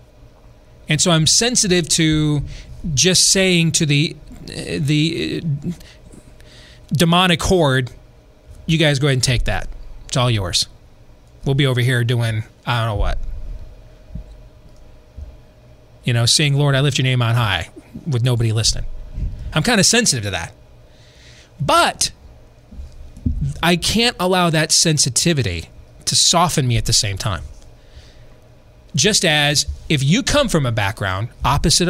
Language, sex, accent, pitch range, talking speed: English, male, American, 115-170 Hz, 140 wpm